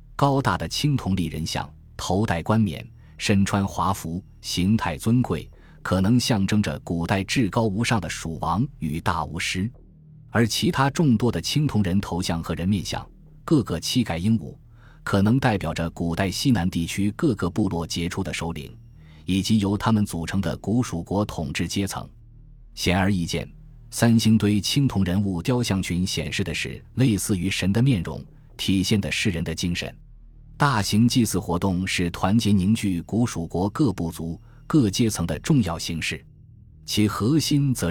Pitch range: 90-120 Hz